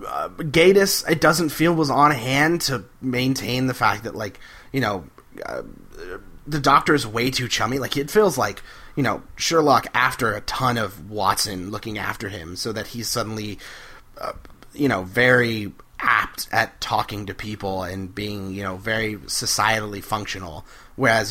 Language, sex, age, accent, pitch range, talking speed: English, male, 30-49, American, 100-140 Hz, 165 wpm